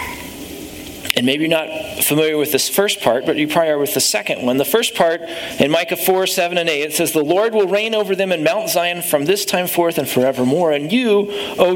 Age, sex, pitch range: 40-59, male, 150-200 Hz